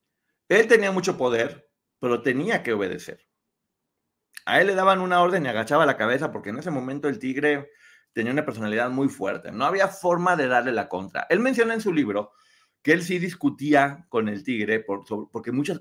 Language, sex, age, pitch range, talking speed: Spanish, male, 30-49, 125-185 Hz, 195 wpm